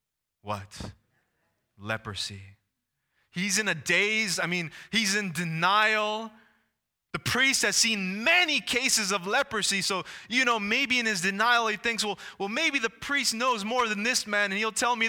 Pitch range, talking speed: 155-220 Hz, 165 wpm